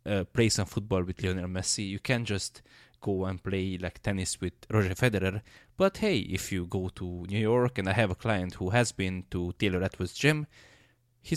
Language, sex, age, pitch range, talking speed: English, male, 20-39, 90-110 Hz, 205 wpm